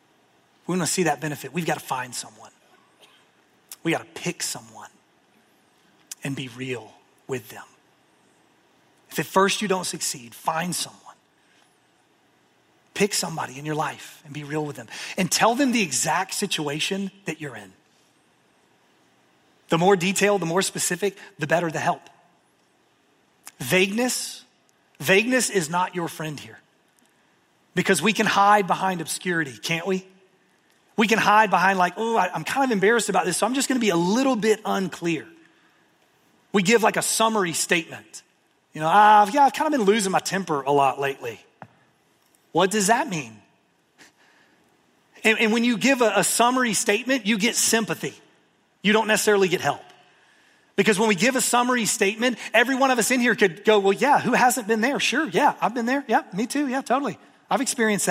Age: 30-49